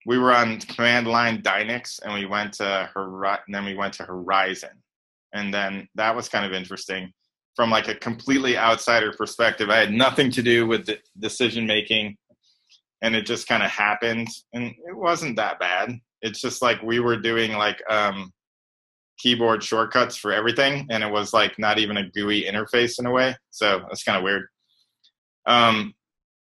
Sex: male